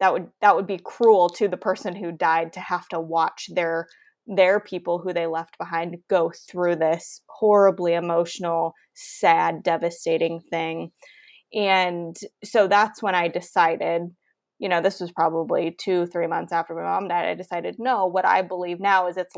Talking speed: 175 wpm